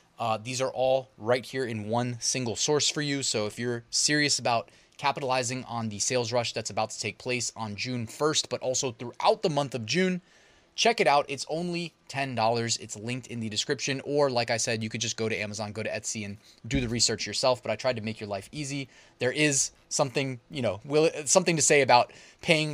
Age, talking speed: 20-39, 220 wpm